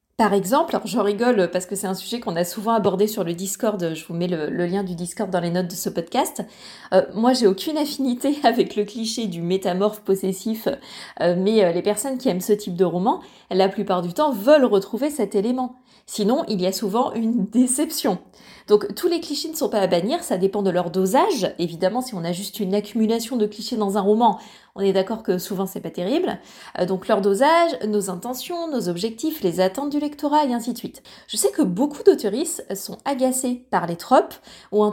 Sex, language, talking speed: female, French, 220 wpm